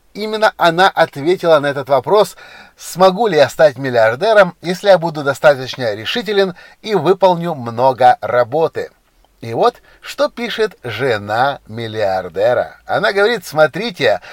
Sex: male